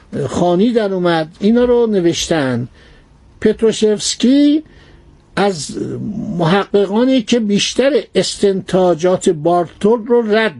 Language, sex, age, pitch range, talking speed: Persian, male, 60-79, 170-215 Hz, 85 wpm